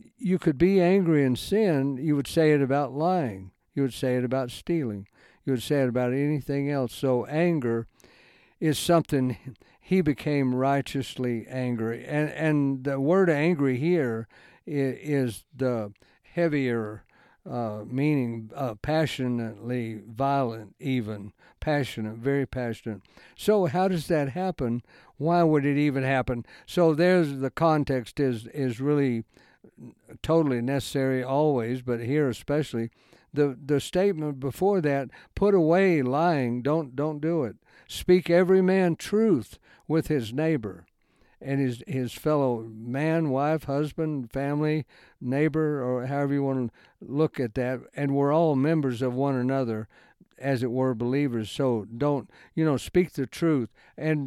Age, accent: 60-79, American